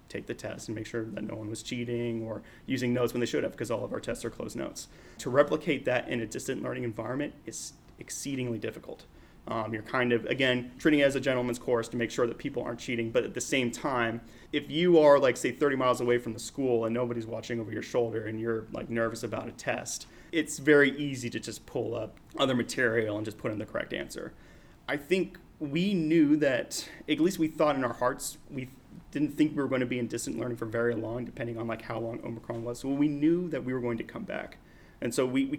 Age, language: 30-49, English